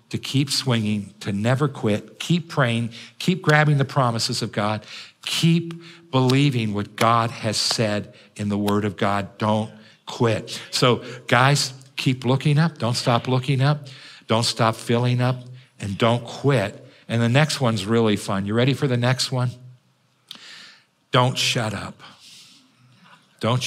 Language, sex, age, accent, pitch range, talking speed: English, male, 50-69, American, 110-135 Hz, 150 wpm